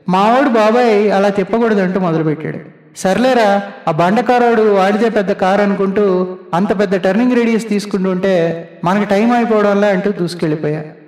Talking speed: 145 wpm